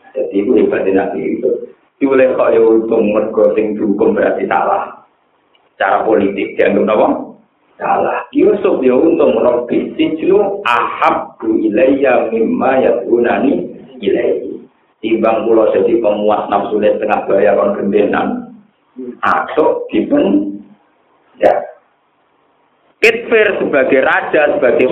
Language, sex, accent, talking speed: Indonesian, male, native, 115 wpm